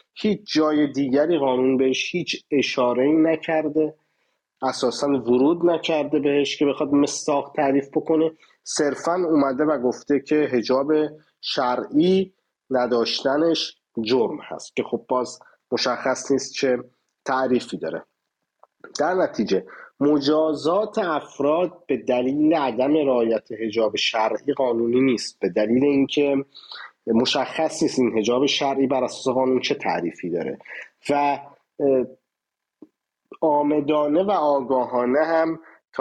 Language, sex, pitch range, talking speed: English, male, 125-150 Hz, 110 wpm